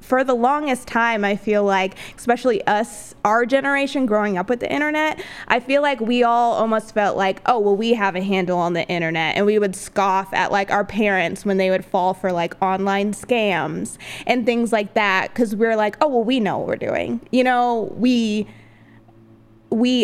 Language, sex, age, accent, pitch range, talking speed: English, female, 20-39, American, 195-245 Hz, 200 wpm